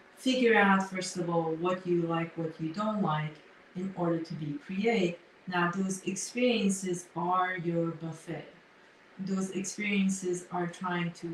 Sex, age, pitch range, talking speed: female, 40-59, 160-185 Hz, 150 wpm